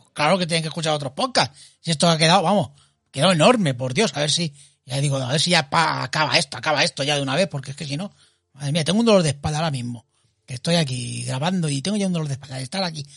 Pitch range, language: 135-185 Hz, Spanish